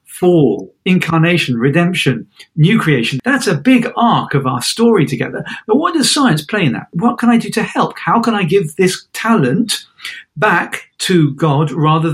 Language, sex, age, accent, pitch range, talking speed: English, male, 50-69, British, 135-175 Hz, 180 wpm